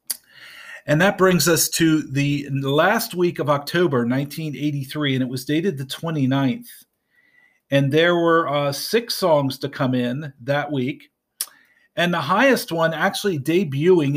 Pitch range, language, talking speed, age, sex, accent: 135-170 Hz, English, 145 wpm, 40-59, male, American